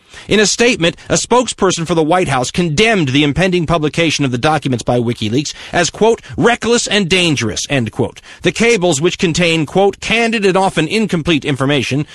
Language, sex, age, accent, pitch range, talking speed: English, male, 40-59, American, 140-195 Hz, 175 wpm